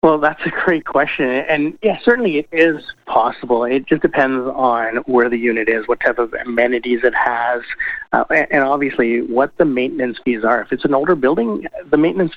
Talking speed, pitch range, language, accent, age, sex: 195 wpm, 115-135 Hz, English, American, 30-49, male